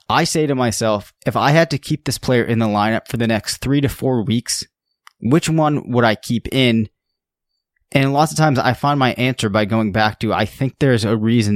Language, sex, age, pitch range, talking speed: English, male, 20-39, 110-135 Hz, 230 wpm